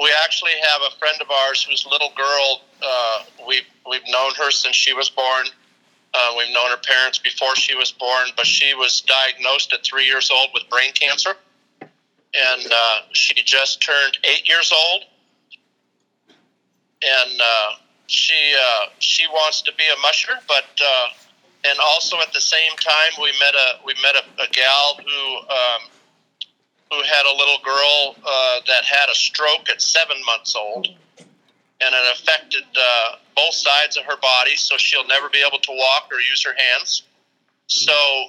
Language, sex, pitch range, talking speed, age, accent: English, male, 130-155 Hz, 170 wpm, 50-69, American